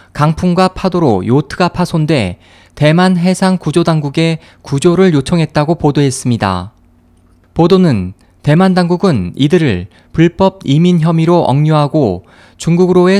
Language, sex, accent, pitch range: Korean, male, native, 120-180 Hz